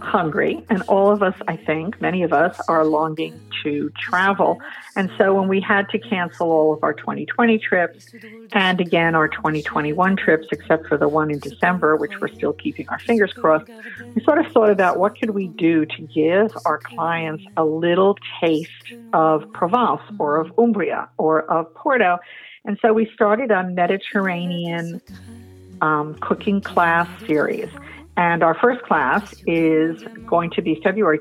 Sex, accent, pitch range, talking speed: female, American, 160-205 Hz, 165 wpm